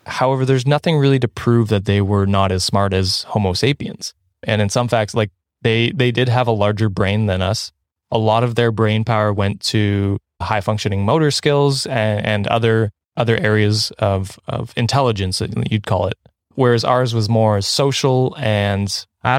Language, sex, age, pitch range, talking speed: English, male, 20-39, 100-120 Hz, 185 wpm